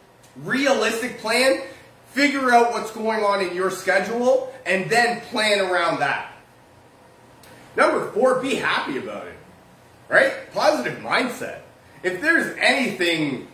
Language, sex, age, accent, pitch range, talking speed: English, male, 30-49, American, 170-215 Hz, 120 wpm